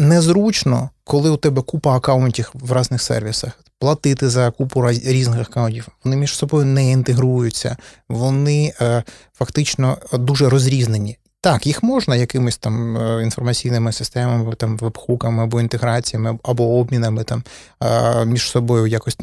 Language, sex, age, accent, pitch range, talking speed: Ukrainian, male, 20-39, native, 115-135 Hz, 125 wpm